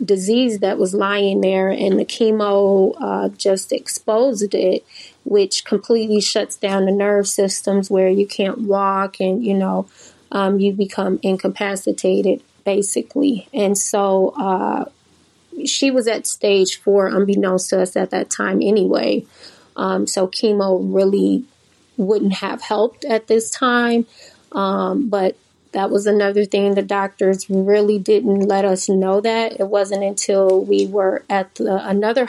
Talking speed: 145 wpm